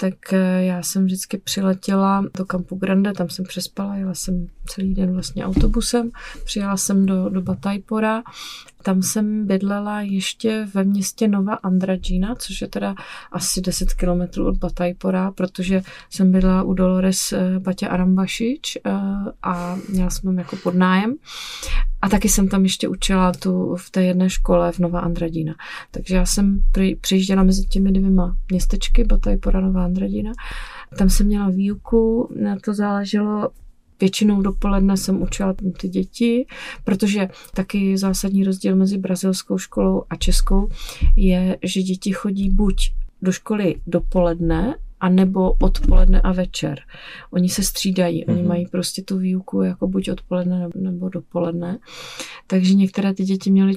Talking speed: 145 wpm